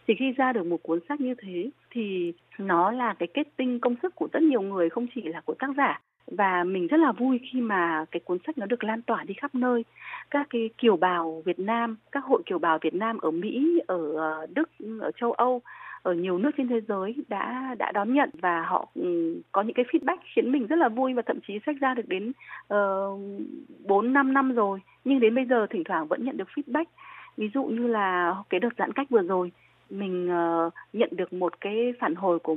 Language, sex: Vietnamese, female